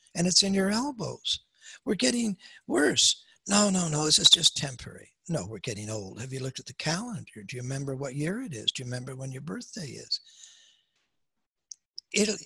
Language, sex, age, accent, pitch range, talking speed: English, male, 60-79, American, 125-175 Hz, 195 wpm